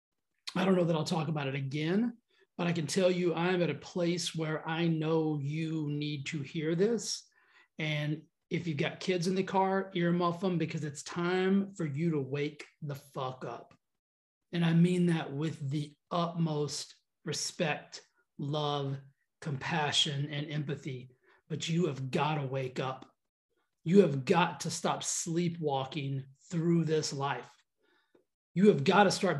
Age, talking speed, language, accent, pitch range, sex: 30-49, 160 wpm, English, American, 150-195 Hz, male